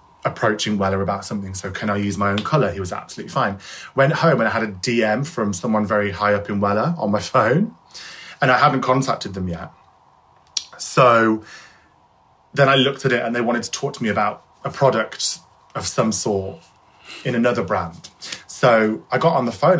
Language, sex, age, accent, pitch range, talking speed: English, male, 20-39, British, 100-125 Hz, 200 wpm